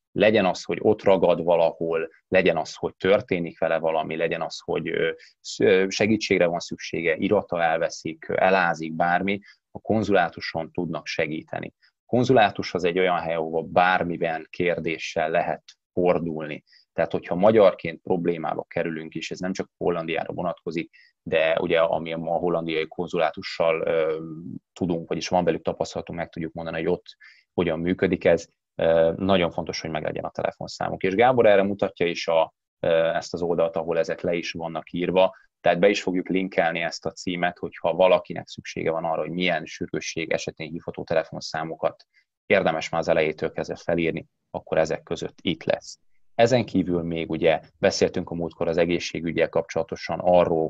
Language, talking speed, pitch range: Hungarian, 150 wpm, 80-90 Hz